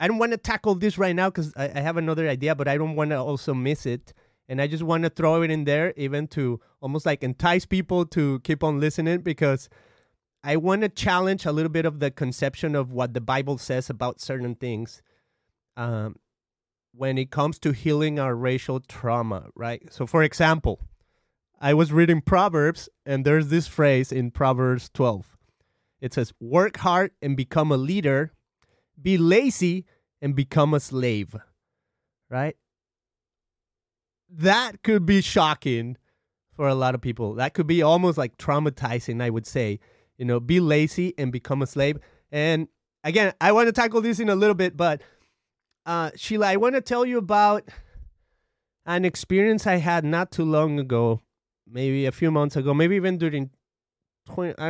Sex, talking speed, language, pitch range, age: male, 175 wpm, English, 125-170 Hz, 30-49